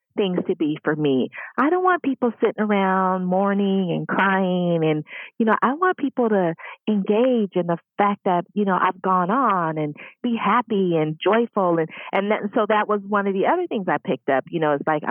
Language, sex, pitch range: English, female, 160-220 Hz